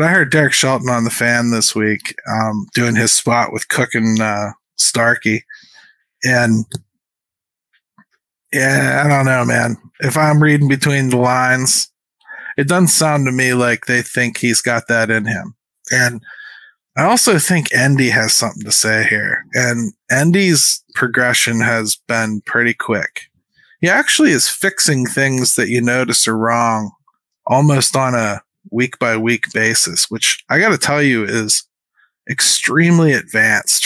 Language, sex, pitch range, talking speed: English, male, 115-150 Hz, 150 wpm